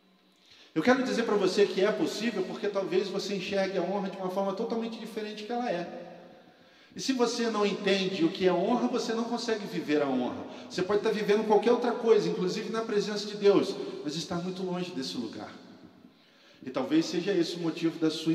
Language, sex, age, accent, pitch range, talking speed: Portuguese, male, 40-59, Brazilian, 175-220 Hz, 205 wpm